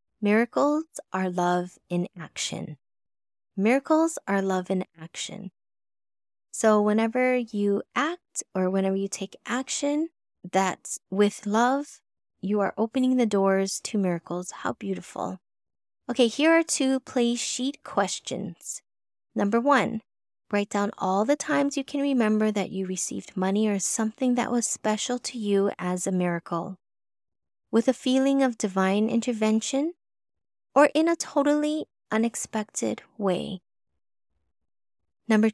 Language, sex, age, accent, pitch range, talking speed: English, female, 20-39, American, 185-245 Hz, 125 wpm